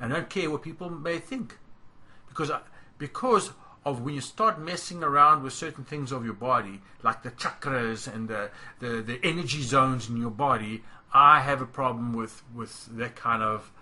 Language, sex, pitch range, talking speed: English, male, 120-165 Hz, 180 wpm